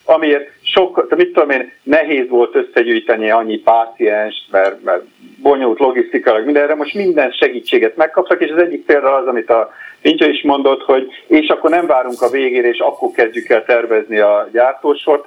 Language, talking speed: Hungarian, 170 wpm